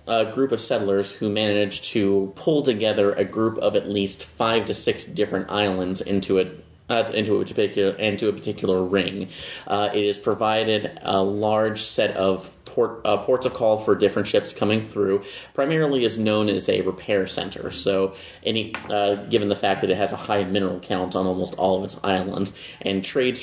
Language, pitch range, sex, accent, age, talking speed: English, 95-115 Hz, male, American, 30-49, 190 wpm